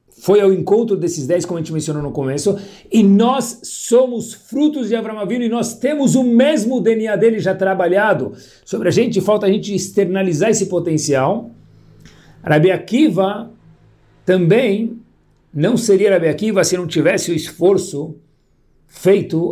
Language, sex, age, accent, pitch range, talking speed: Portuguese, male, 60-79, Brazilian, 140-220 Hz, 145 wpm